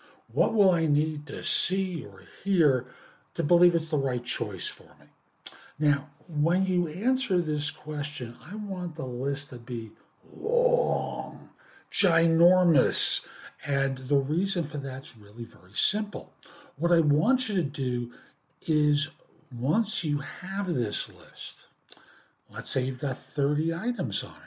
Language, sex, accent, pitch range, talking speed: English, male, American, 130-175 Hz, 140 wpm